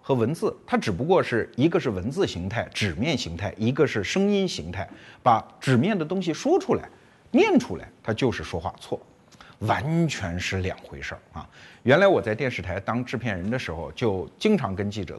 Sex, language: male, Chinese